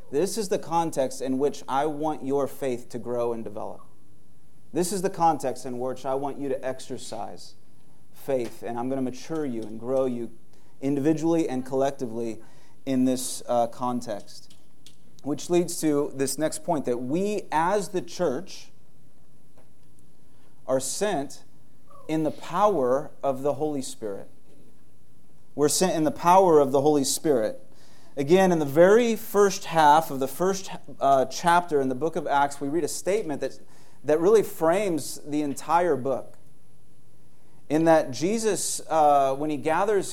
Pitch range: 135-175 Hz